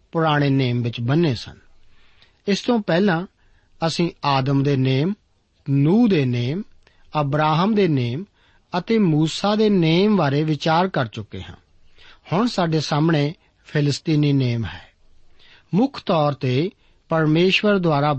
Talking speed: 125 wpm